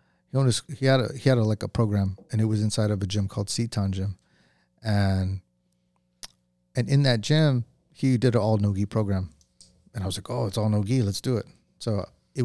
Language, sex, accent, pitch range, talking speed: English, male, American, 95-120 Hz, 215 wpm